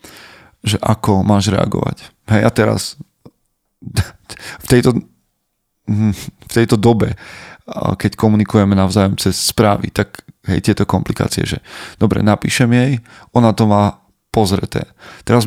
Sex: male